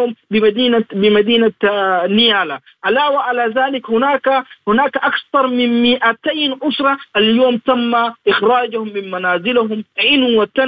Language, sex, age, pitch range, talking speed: Arabic, male, 40-59, 195-250 Hz, 100 wpm